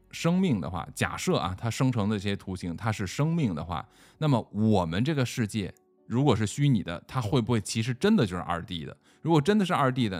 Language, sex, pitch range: Chinese, male, 95-150 Hz